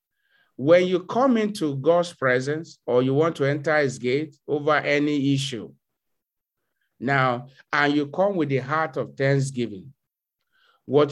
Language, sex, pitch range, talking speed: English, male, 135-170 Hz, 140 wpm